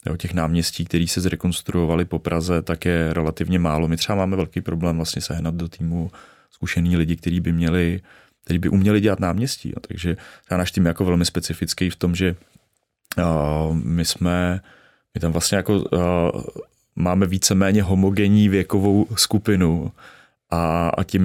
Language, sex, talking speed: Czech, male, 165 wpm